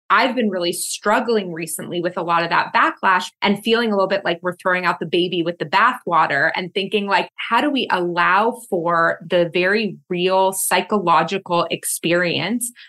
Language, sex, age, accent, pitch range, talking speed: English, female, 20-39, American, 180-230 Hz, 175 wpm